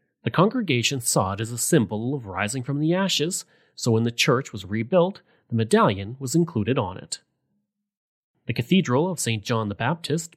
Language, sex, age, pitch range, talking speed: English, male, 30-49, 115-170 Hz, 180 wpm